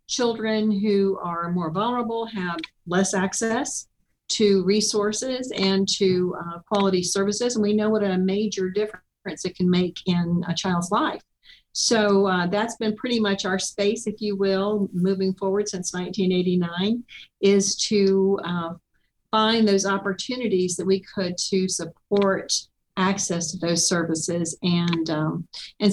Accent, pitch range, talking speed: American, 180-215 Hz, 145 wpm